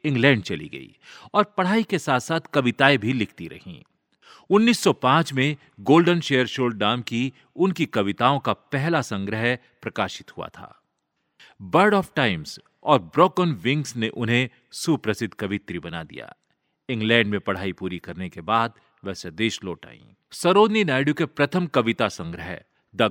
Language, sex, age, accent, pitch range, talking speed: Hindi, male, 40-59, native, 110-150 Hz, 95 wpm